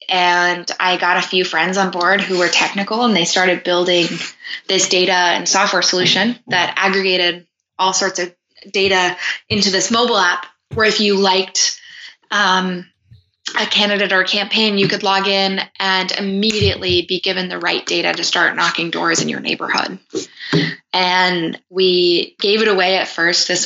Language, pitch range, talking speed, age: English, 175-195 Hz, 165 wpm, 20-39